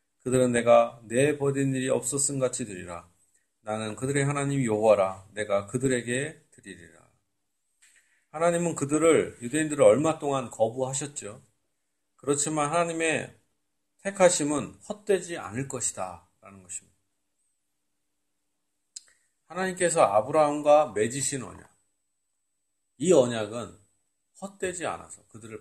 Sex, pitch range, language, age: male, 100-165 Hz, Korean, 40-59